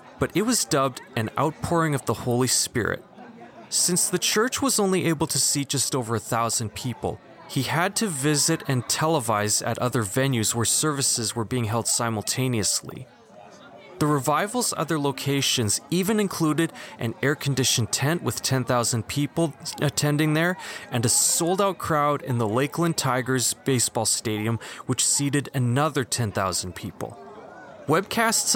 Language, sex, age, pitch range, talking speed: English, male, 20-39, 120-165 Hz, 145 wpm